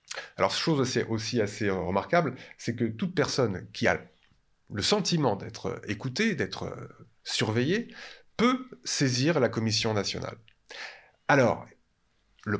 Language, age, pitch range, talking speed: French, 30-49, 105-140 Hz, 115 wpm